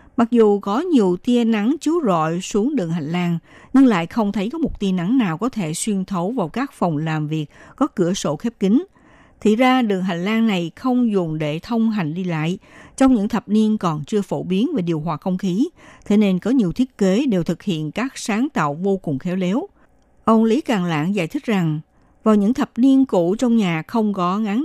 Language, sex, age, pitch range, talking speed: Vietnamese, female, 60-79, 175-240 Hz, 230 wpm